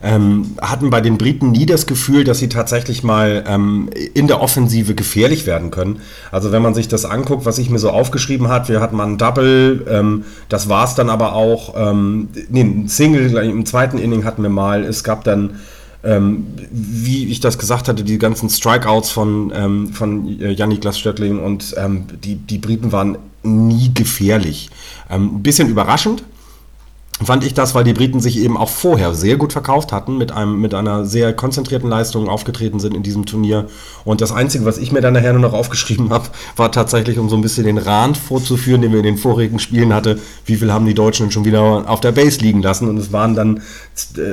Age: 40-59